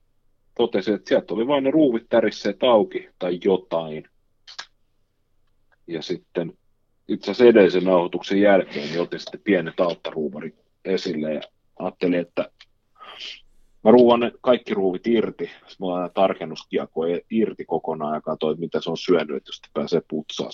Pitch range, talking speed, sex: 85-120 Hz, 150 wpm, male